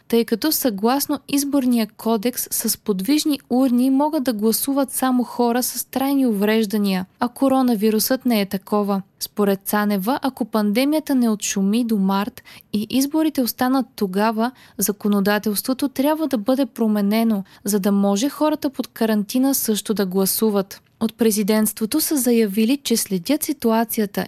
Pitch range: 205-265 Hz